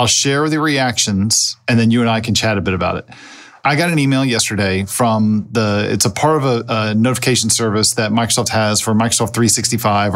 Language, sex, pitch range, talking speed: English, male, 110-135 Hz, 215 wpm